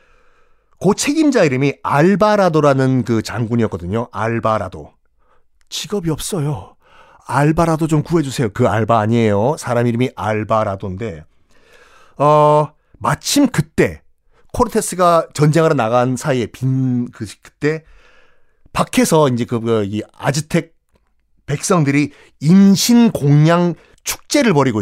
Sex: male